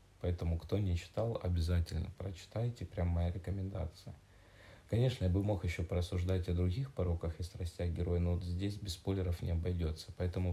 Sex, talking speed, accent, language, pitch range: male, 165 wpm, native, Russian, 85-100 Hz